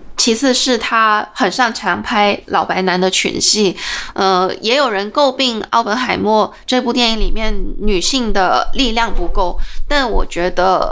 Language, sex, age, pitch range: Chinese, female, 20-39, 195-250 Hz